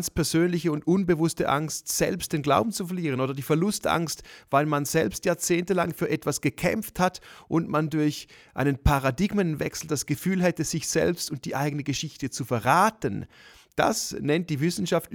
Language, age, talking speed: German, 30-49, 160 wpm